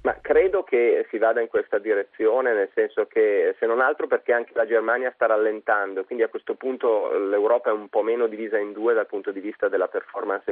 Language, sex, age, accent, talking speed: Italian, male, 30-49, native, 215 wpm